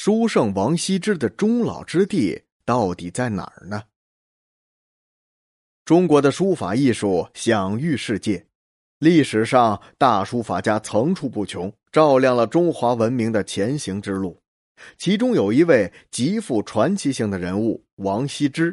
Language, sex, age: Chinese, male, 30-49